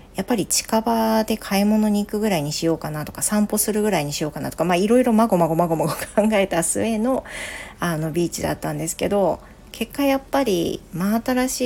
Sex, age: female, 40-59